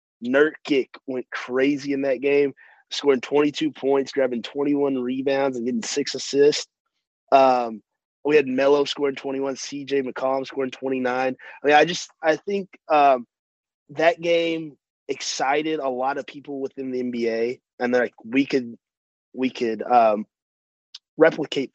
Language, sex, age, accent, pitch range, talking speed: English, male, 30-49, American, 130-150 Hz, 145 wpm